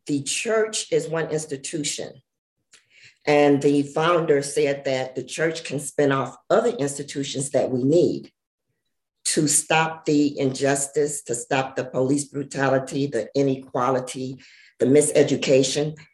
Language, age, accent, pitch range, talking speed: English, 50-69, American, 140-170 Hz, 125 wpm